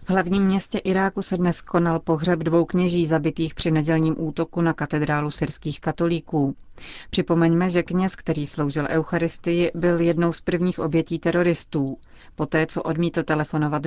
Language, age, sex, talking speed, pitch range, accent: Czech, 30-49, female, 145 wpm, 150-170 Hz, native